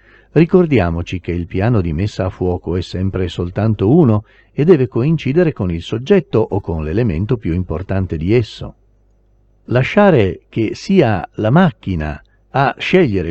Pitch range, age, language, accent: 90-120 Hz, 50-69, Italian, native